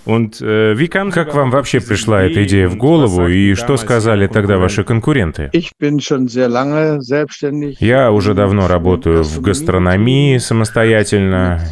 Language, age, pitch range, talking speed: Russian, 20-39, 95-125 Hz, 125 wpm